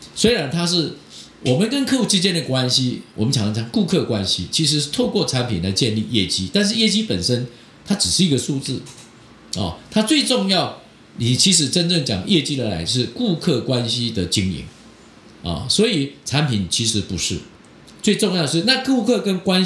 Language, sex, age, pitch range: Chinese, male, 50-69, 105-165 Hz